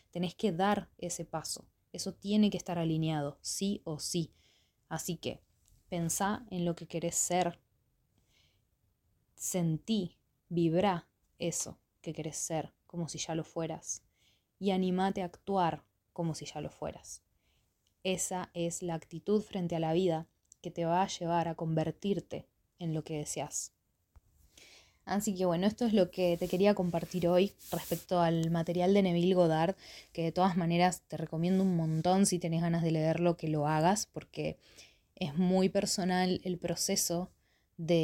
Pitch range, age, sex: 160-180 Hz, 20-39, female